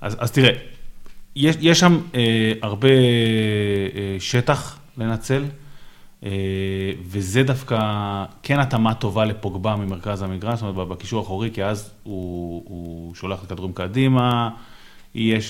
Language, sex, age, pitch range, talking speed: Hebrew, male, 30-49, 100-125 Hz, 130 wpm